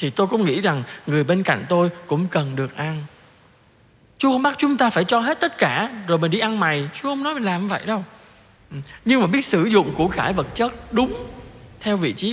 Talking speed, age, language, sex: 235 wpm, 20-39, Vietnamese, male